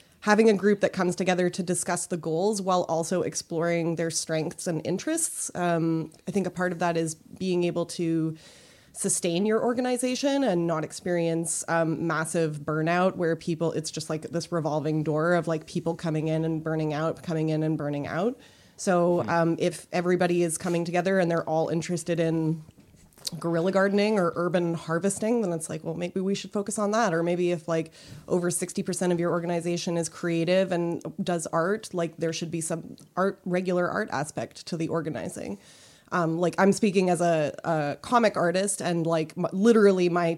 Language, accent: English, American